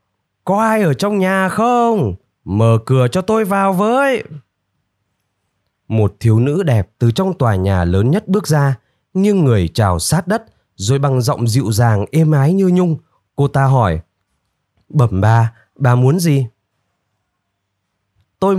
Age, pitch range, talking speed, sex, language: 20-39, 110-170 Hz, 155 wpm, male, Vietnamese